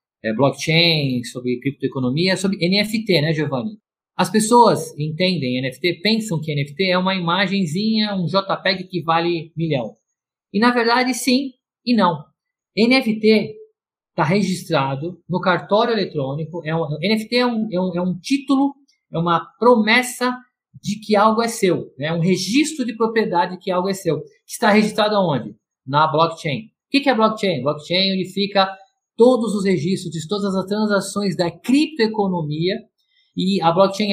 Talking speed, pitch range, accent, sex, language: 150 wpm, 155-215 Hz, Brazilian, male, Portuguese